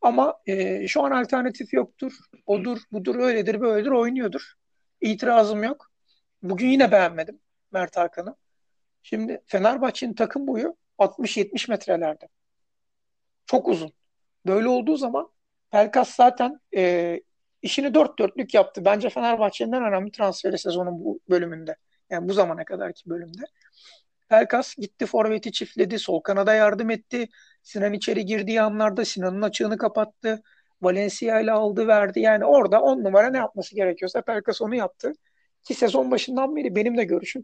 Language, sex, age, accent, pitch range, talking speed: Turkish, male, 60-79, native, 190-240 Hz, 135 wpm